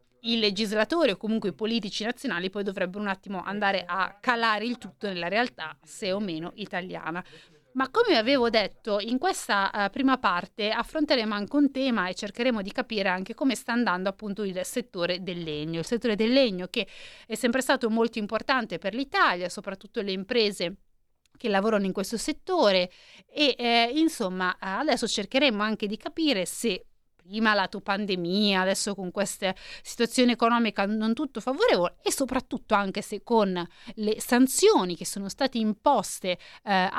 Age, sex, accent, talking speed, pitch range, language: 30-49, female, native, 160 wpm, 195-255 Hz, Italian